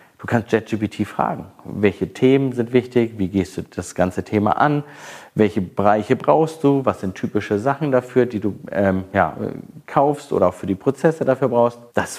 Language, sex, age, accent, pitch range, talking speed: German, male, 40-59, German, 100-135 Hz, 175 wpm